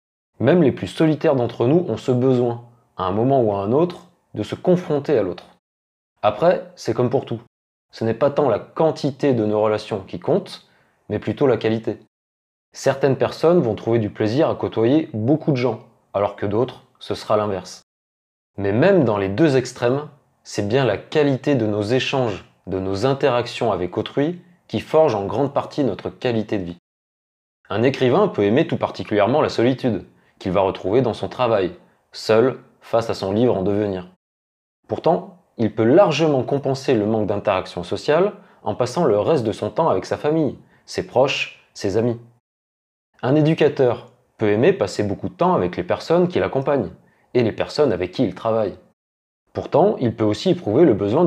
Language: French